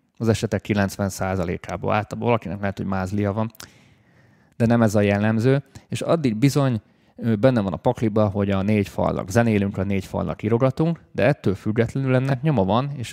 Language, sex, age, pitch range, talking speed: Hungarian, male, 30-49, 100-125 Hz, 175 wpm